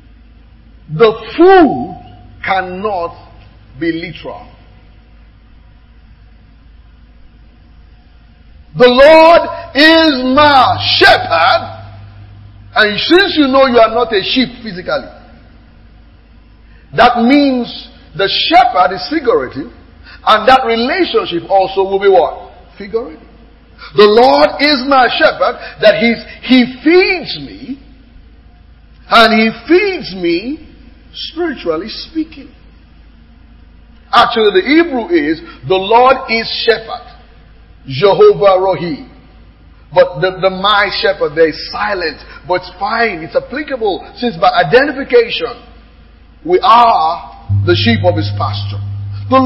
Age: 50-69